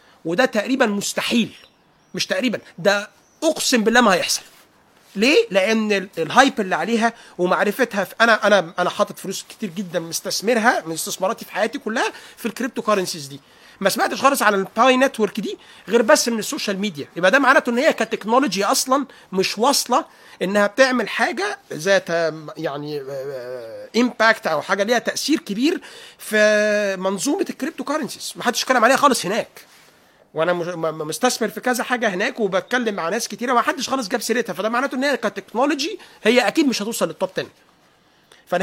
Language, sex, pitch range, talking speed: Arabic, male, 190-255 Hz, 155 wpm